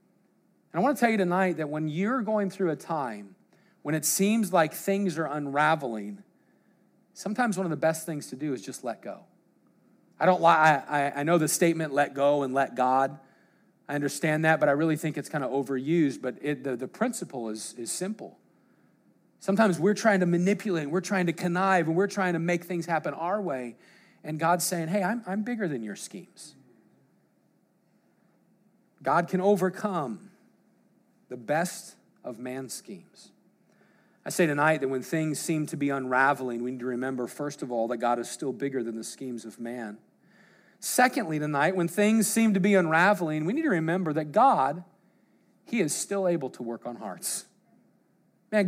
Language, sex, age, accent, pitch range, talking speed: English, male, 40-59, American, 140-195 Hz, 185 wpm